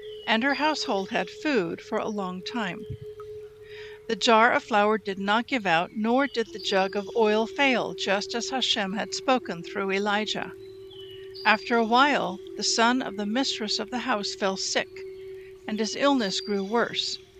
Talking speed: 170 wpm